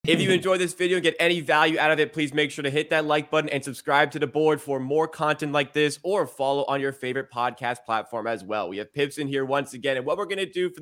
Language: English